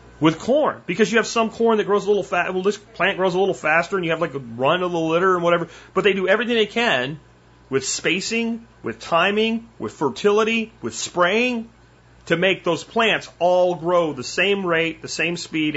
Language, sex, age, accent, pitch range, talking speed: English, male, 30-49, American, 160-235 Hz, 215 wpm